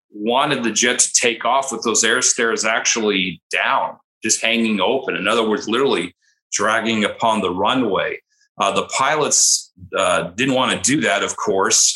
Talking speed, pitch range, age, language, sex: 170 wpm, 105-145 Hz, 40-59, English, male